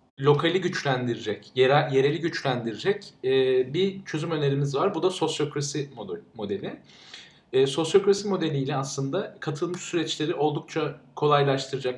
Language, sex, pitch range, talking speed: Turkish, male, 135-160 Hz, 100 wpm